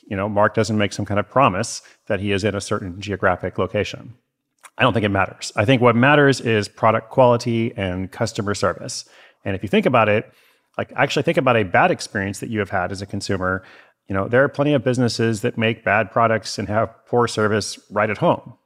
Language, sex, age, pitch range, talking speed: English, male, 40-59, 100-120 Hz, 225 wpm